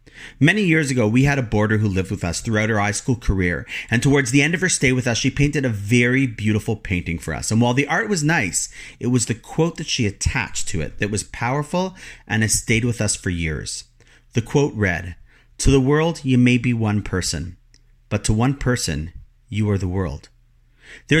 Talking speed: 220 wpm